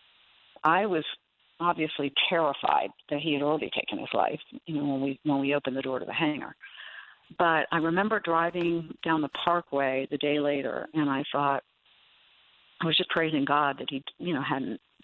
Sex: female